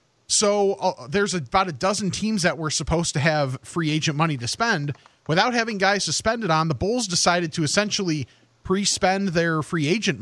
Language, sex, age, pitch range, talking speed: English, male, 30-49, 135-190 Hz, 195 wpm